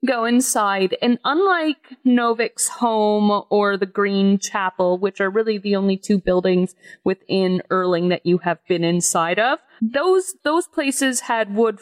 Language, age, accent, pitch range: English, 30-49, American, 185-230 Hz